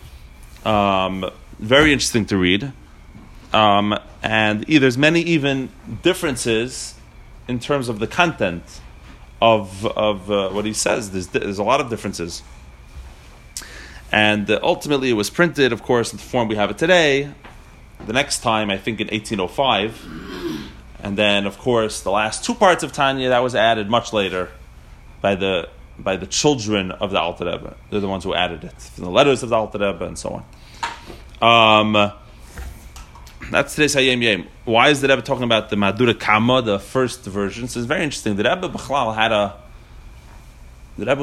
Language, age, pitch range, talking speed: English, 30-49, 95-125 Hz, 170 wpm